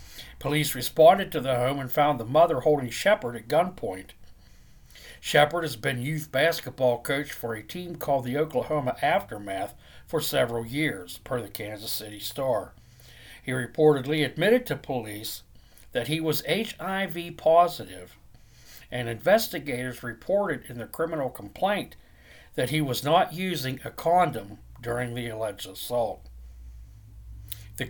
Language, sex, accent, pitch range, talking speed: English, male, American, 110-150 Hz, 135 wpm